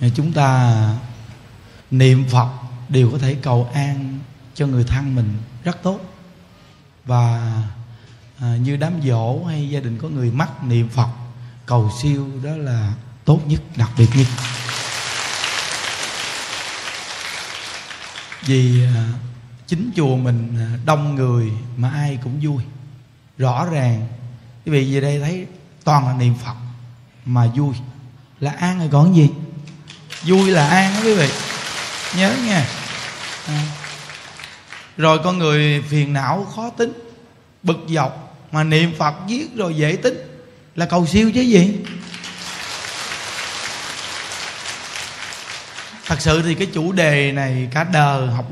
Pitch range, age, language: 125-165 Hz, 20-39, Vietnamese